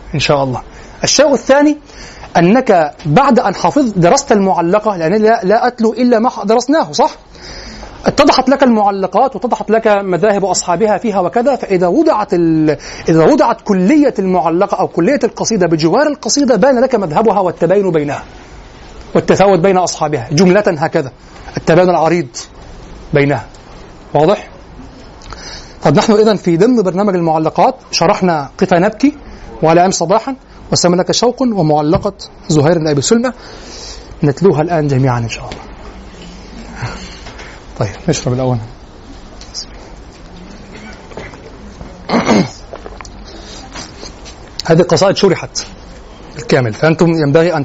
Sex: male